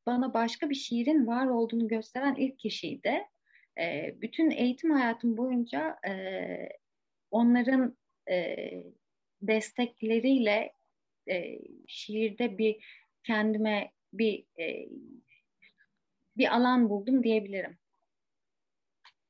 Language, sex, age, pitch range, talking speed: Turkish, female, 30-49, 225-280 Hz, 85 wpm